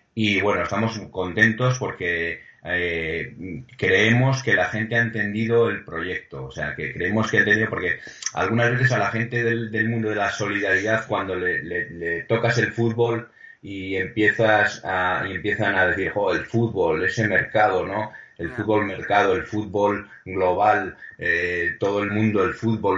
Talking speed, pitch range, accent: 170 wpm, 85-115 Hz, Spanish